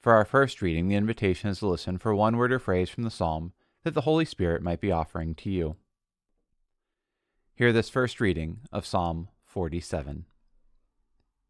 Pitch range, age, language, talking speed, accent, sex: 95-120 Hz, 30-49, English, 170 wpm, American, male